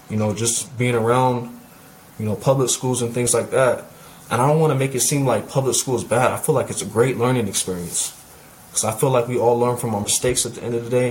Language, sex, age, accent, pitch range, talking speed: English, male, 20-39, American, 110-125 Hz, 270 wpm